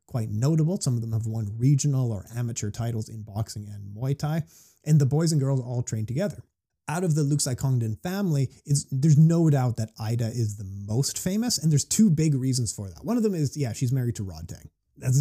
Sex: male